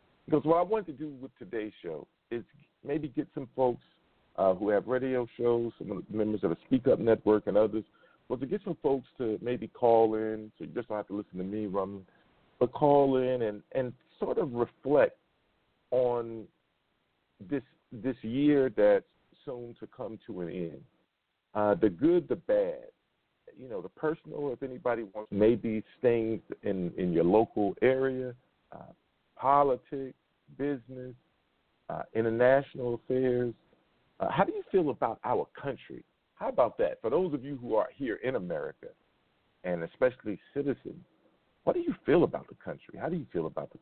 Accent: American